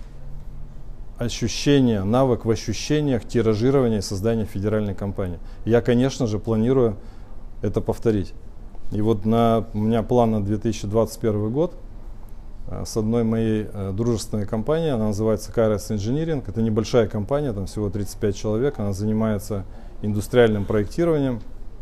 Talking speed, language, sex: 120 wpm, Russian, male